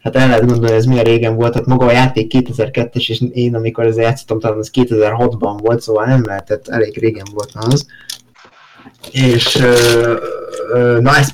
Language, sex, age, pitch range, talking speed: Hungarian, male, 20-39, 115-135 Hz, 180 wpm